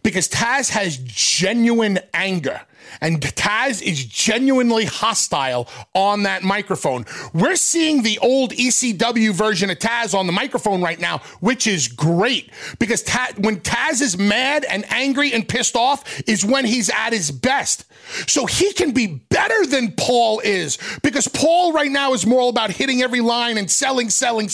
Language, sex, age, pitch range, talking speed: English, male, 30-49, 205-280 Hz, 160 wpm